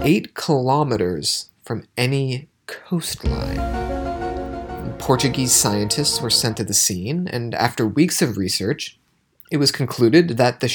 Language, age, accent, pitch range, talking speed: English, 30-49, American, 105-155 Hz, 125 wpm